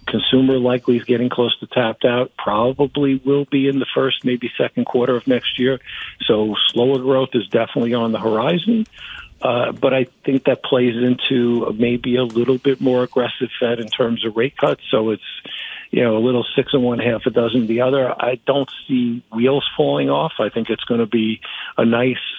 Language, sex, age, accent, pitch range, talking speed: English, male, 50-69, American, 115-130 Hz, 200 wpm